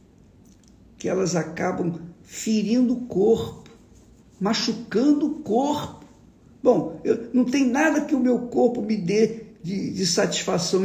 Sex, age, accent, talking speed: male, 50-69, Brazilian, 120 wpm